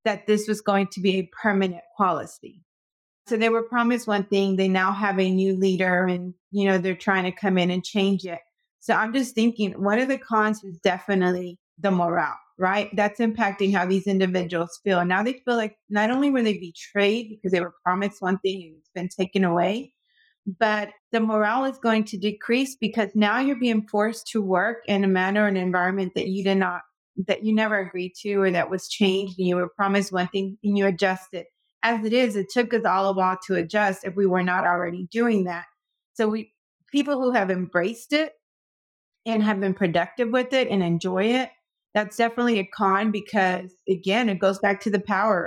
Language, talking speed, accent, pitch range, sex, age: English, 210 wpm, American, 185-220 Hz, female, 30-49